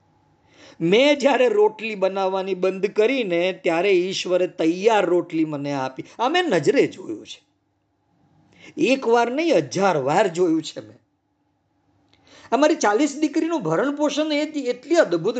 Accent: native